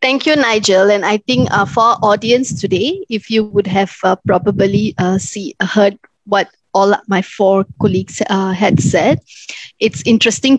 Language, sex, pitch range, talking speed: English, female, 190-225 Hz, 170 wpm